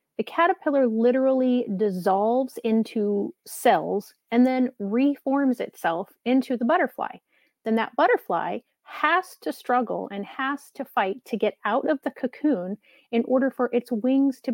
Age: 30-49